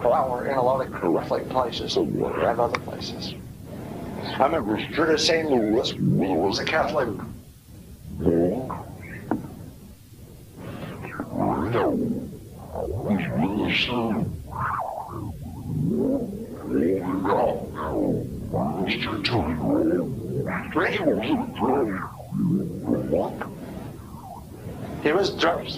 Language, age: English, 60-79